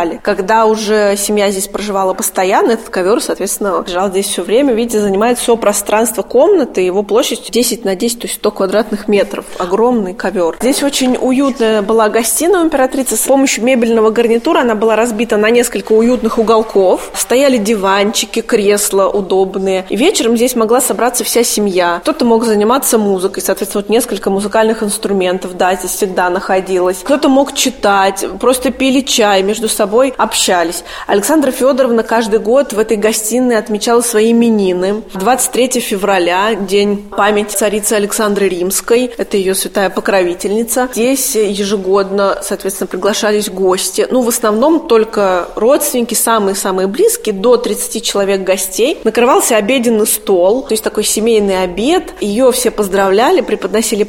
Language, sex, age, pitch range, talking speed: Russian, female, 20-39, 195-235 Hz, 140 wpm